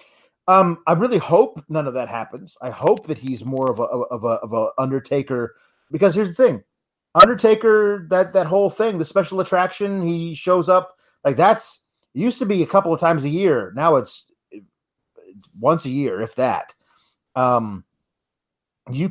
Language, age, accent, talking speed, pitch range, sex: English, 30-49, American, 180 wpm, 130-185 Hz, male